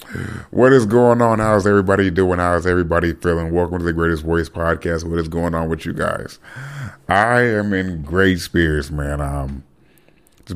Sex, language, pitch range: male, English, 85-100 Hz